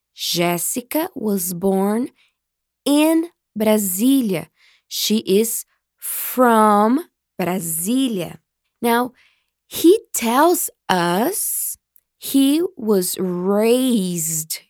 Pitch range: 185-240 Hz